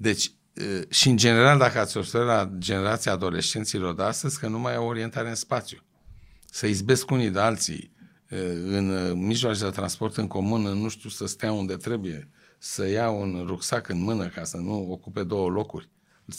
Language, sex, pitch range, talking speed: Romanian, male, 90-120 Hz, 180 wpm